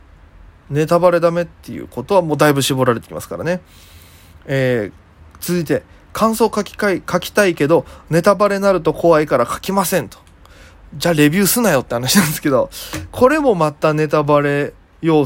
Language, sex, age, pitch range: Japanese, male, 20-39, 115-180 Hz